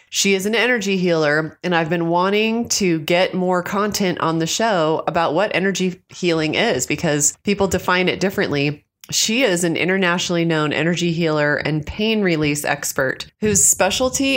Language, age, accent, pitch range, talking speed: English, 30-49, American, 160-190 Hz, 165 wpm